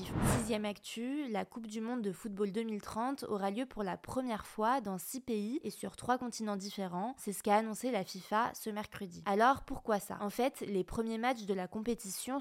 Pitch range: 195-230 Hz